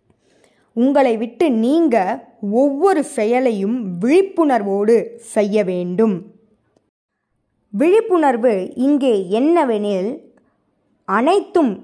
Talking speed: 60 wpm